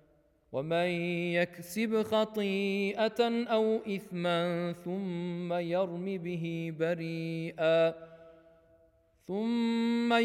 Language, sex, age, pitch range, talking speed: Urdu, male, 40-59, 220-265 Hz, 60 wpm